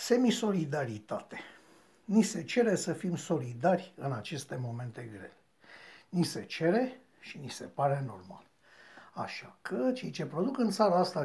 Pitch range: 150-220 Hz